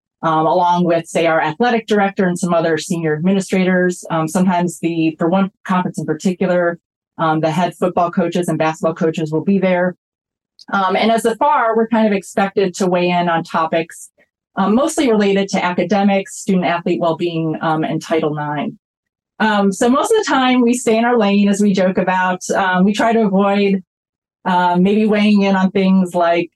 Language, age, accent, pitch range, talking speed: English, 30-49, American, 170-200 Hz, 190 wpm